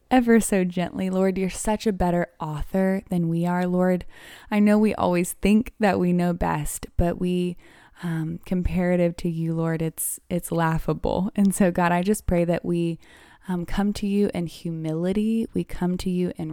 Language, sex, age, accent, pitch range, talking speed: English, female, 20-39, American, 170-195 Hz, 185 wpm